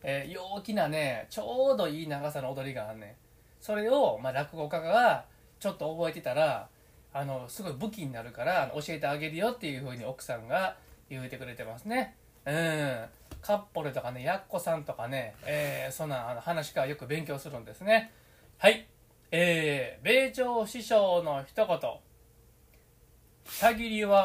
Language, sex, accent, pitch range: Japanese, male, native, 135-205 Hz